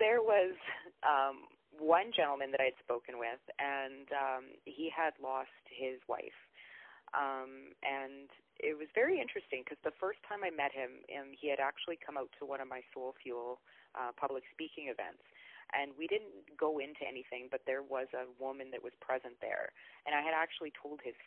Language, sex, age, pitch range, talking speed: English, female, 30-49, 135-185 Hz, 190 wpm